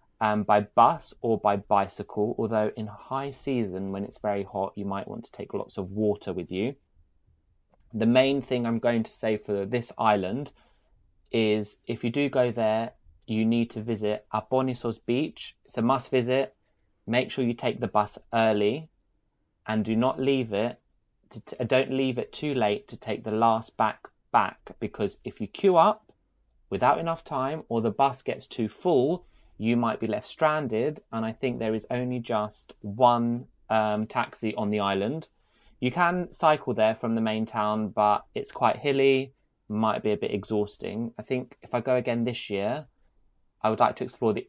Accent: British